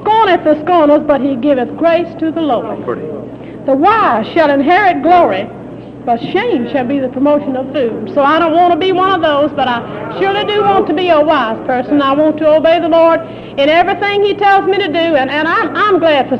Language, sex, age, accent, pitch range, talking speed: English, female, 50-69, American, 295-385 Hz, 225 wpm